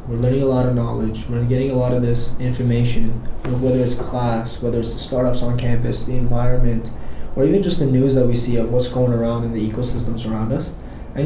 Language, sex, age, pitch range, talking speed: English, male, 20-39, 120-145 Hz, 225 wpm